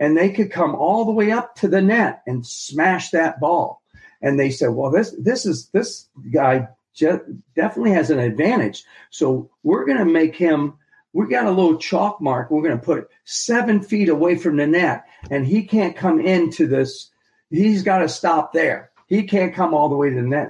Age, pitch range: 50-69, 130-170 Hz